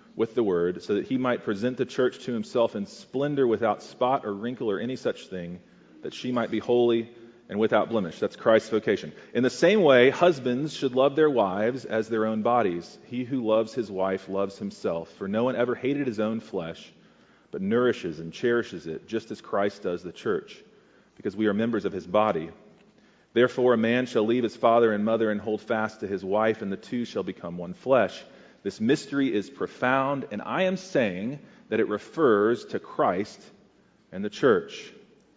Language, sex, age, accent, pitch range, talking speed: English, male, 40-59, American, 105-145 Hz, 200 wpm